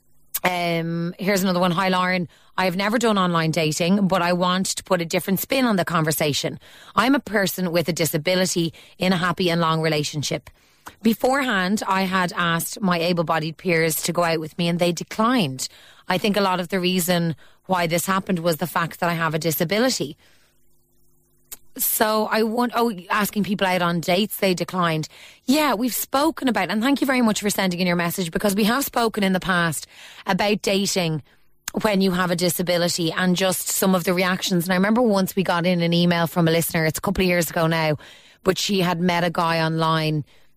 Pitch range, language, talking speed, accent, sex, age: 170-195 Hz, English, 205 wpm, Irish, female, 30-49